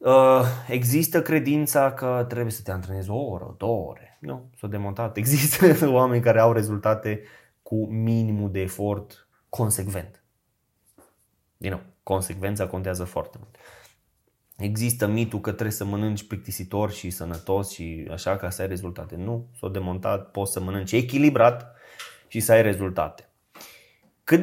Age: 20-39